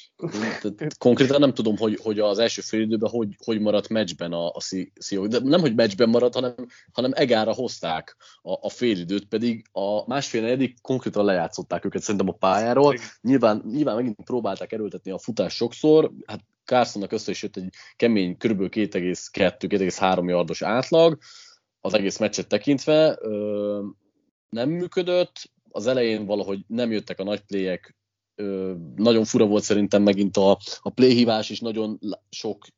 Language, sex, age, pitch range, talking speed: Hungarian, male, 30-49, 100-120 Hz, 150 wpm